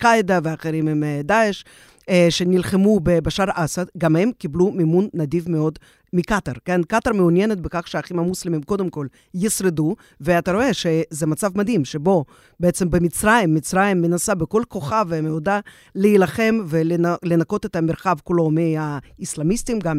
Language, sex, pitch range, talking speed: Hebrew, female, 165-210 Hz, 130 wpm